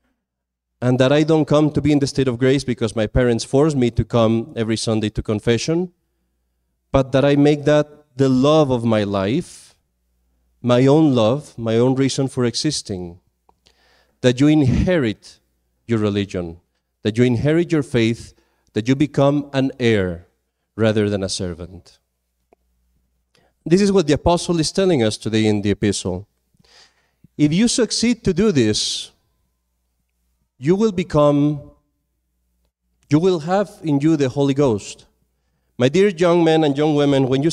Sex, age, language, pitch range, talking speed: male, 40-59, English, 105-145 Hz, 155 wpm